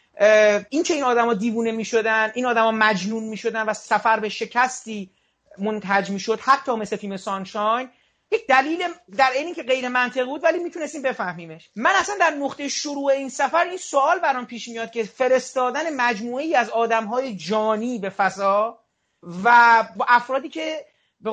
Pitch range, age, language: 225-285 Hz, 40-59, Persian